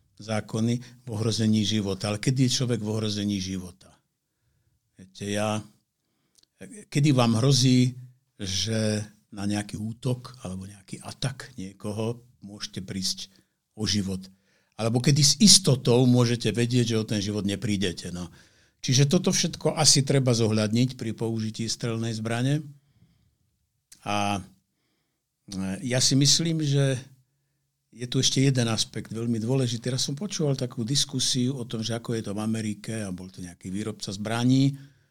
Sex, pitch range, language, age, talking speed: male, 105-135 Hz, Slovak, 60-79, 135 wpm